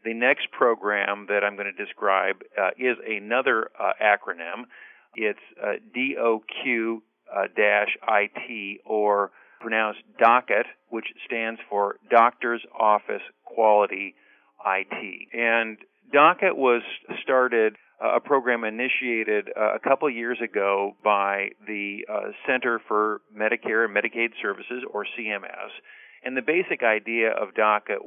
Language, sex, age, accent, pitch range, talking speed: English, male, 50-69, American, 105-120 Hz, 135 wpm